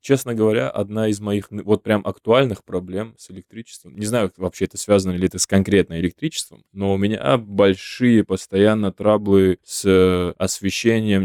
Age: 20-39